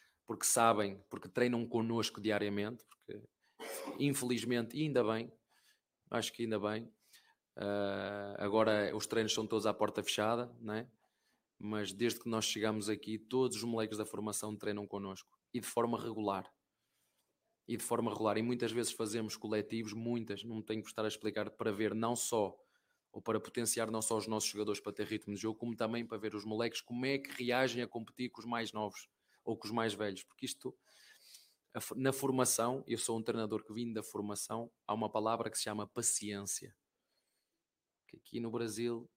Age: 20-39